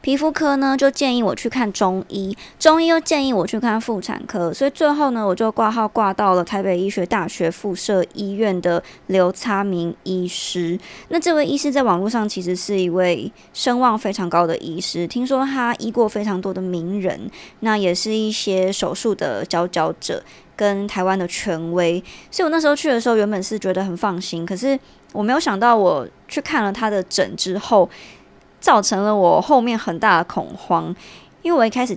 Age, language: 20-39, Chinese